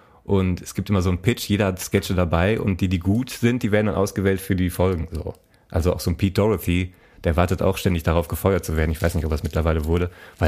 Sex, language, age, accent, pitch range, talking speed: male, German, 30-49, German, 90-115 Hz, 265 wpm